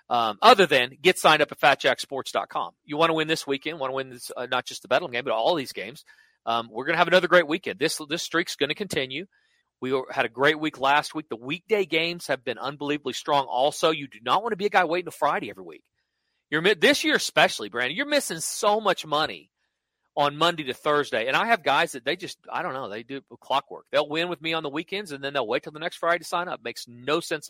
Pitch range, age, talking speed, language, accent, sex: 140-190 Hz, 40-59, 260 wpm, English, American, male